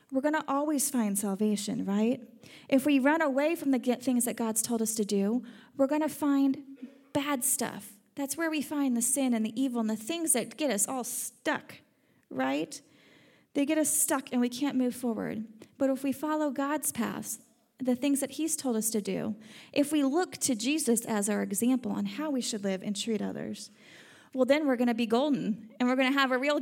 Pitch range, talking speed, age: 220-280 Hz, 220 wpm, 30-49